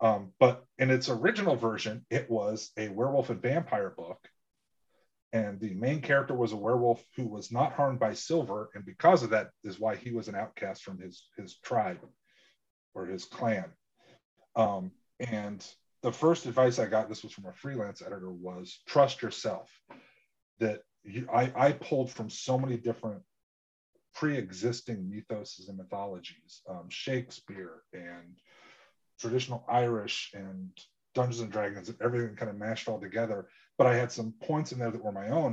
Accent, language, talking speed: American, English, 165 wpm